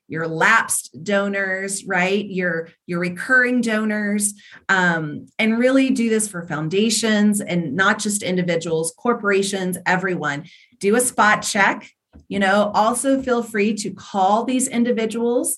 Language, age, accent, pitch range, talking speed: English, 30-49, American, 180-235 Hz, 130 wpm